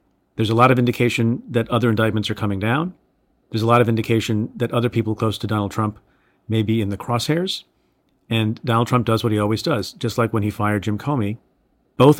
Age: 40-59